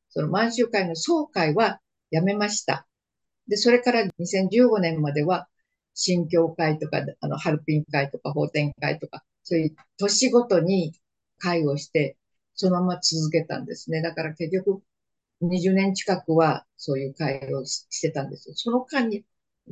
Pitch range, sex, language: 155-195 Hz, female, Japanese